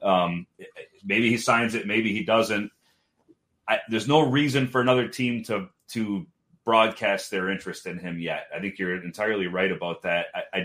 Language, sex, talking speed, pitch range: English, male, 175 wpm, 95-110 Hz